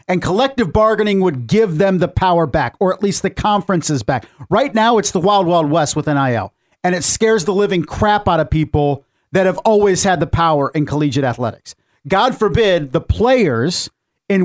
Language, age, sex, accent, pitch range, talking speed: English, 50-69, male, American, 140-185 Hz, 195 wpm